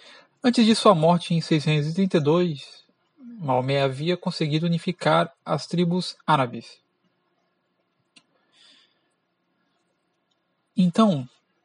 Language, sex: Portuguese, male